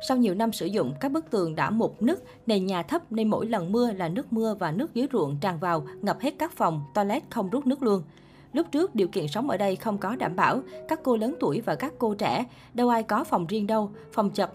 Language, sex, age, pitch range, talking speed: Vietnamese, female, 20-39, 175-235 Hz, 260 wpm